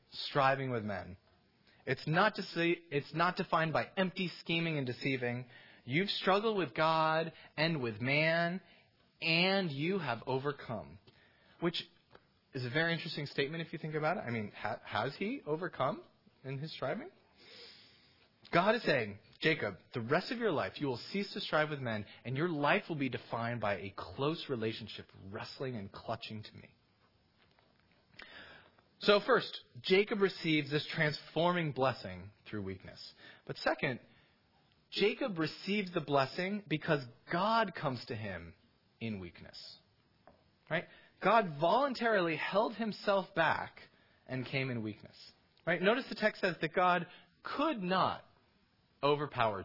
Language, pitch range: English, 120-185 Hz